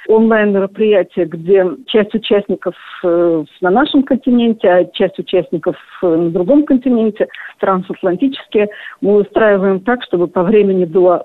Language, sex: Russian, female